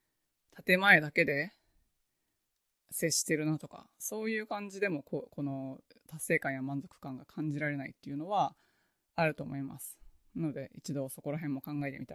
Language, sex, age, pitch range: Japanese, female, 20-39, 145-205 Hz